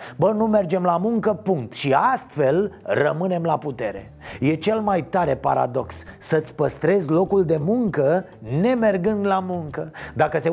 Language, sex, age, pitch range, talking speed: Romanian, male, 30-49, 150-190 Hz, 150 wpm